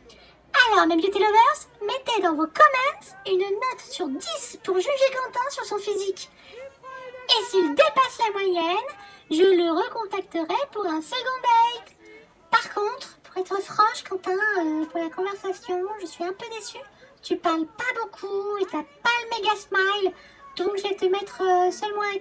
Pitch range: 345-445 Hz